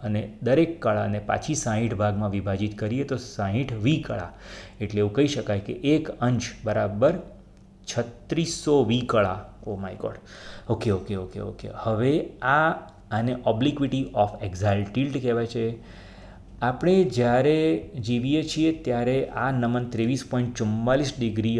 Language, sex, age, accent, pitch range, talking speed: Gujarati, male, 30-49, native, 105-135 Hz, 120 wpm